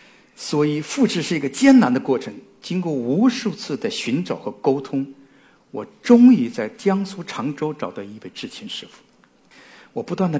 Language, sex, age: Chinese, male, 50-69